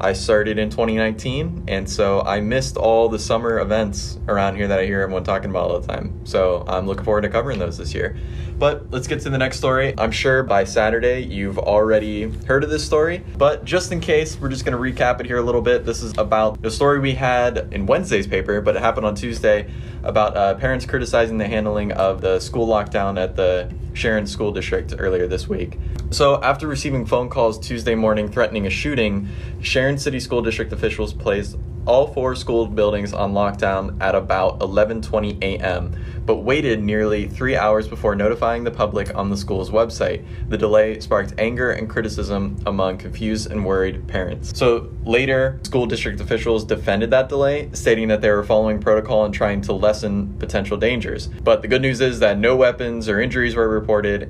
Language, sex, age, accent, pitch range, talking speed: English, male, 20-39, American, 100-120 Hz, 195 wpm